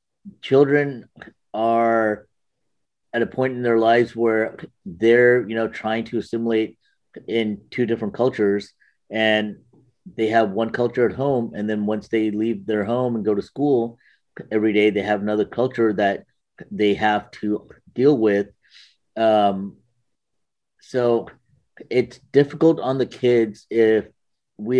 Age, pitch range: 30-49, 105-120 Hz